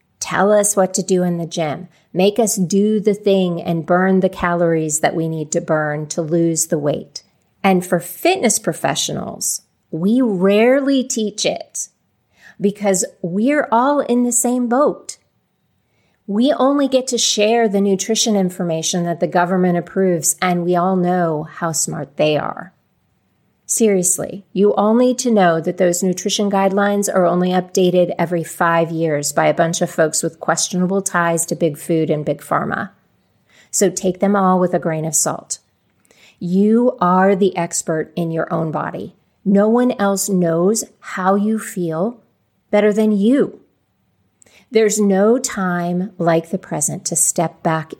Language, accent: English, American